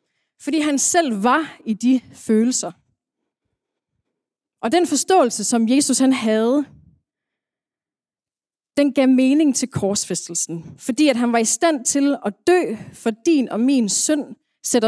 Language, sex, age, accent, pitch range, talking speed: Danish, female, 30-49, native, 220-285 Hz, 135 wpm